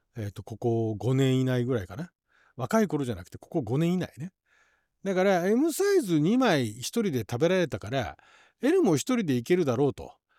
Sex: male